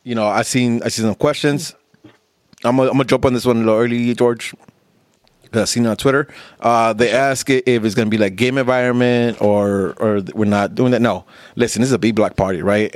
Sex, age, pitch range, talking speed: male, 30-49, 110-125 Hz, 235 wpm